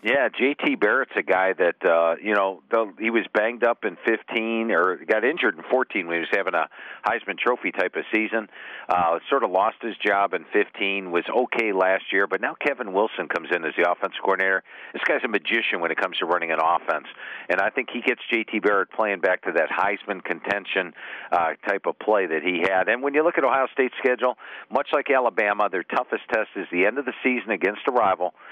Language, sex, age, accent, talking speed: English, male, 50-69, American, 225 wpm